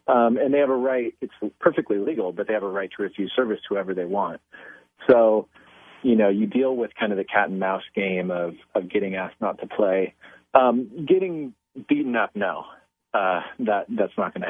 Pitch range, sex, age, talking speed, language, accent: 100-135 Hz, male, 30-49, 215 wpm, English, American